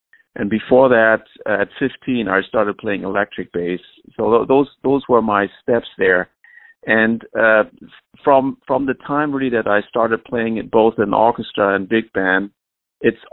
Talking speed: 160 wpm